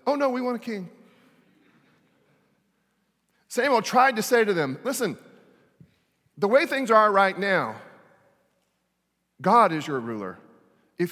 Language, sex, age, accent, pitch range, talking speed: English, male, 40-59, American, 140-195 Hz, 130 wpm